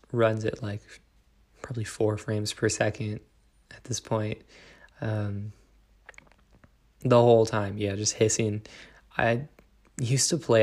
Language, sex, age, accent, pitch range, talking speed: English, male, 20-39, American, 105-115 Hz, 125 wpm